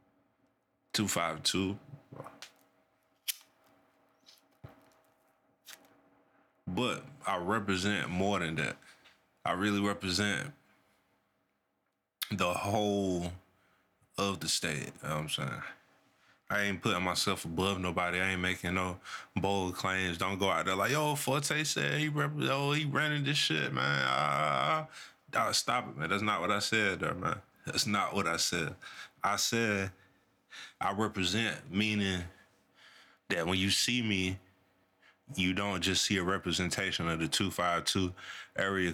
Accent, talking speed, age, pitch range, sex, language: American, 135 wpm, 20-39, 90-105 Hz, male, English